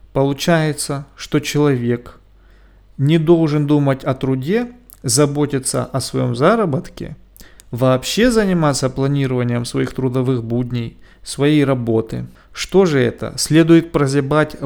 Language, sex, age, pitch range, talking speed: Russian, male, 40-59, 130-155 Hz, 100 wpm